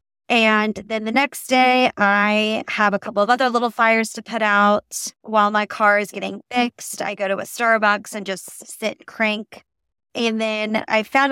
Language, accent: English, American